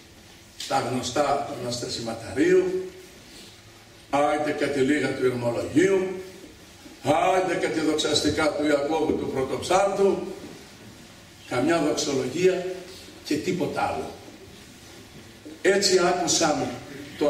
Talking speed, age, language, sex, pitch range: 90 wpm, 60-79, Greek, male, 130-185 Hz